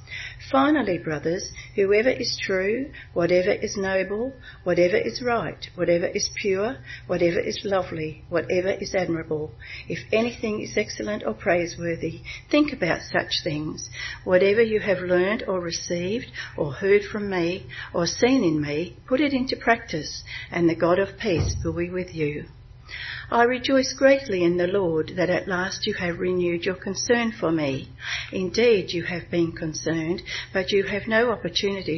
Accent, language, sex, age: Australian, English, female, 60-79